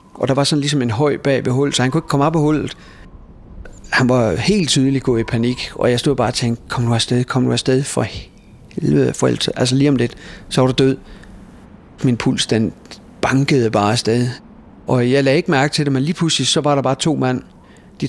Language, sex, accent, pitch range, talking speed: Danish, male, native, 115-150 Hz, 240 wpm